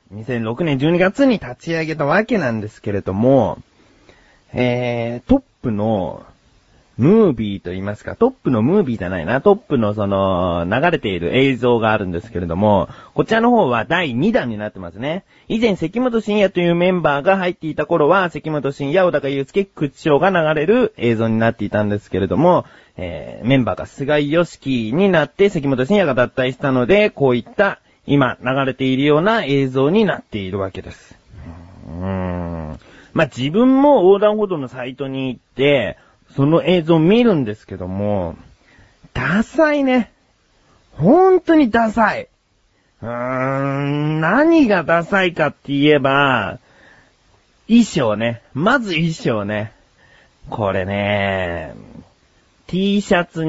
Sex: male